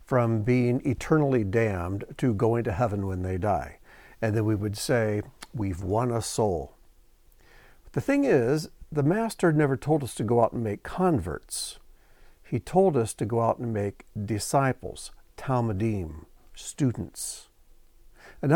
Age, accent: 60-79, American